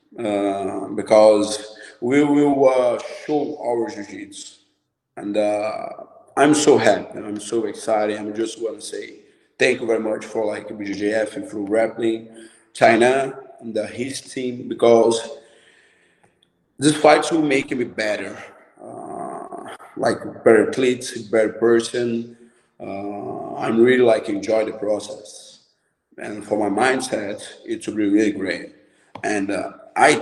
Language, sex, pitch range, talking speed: English, male, 105-150 Hz, 135 wpm